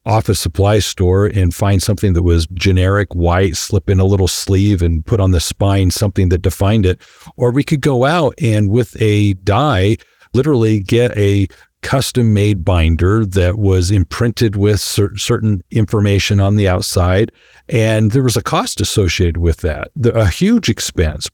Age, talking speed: 50-69, 165 wpm